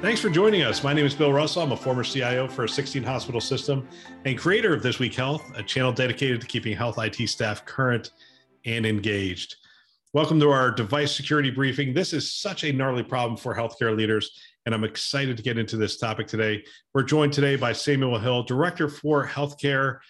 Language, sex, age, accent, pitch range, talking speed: English, male, 40-59, American, 110-145 Hz, 205 wpm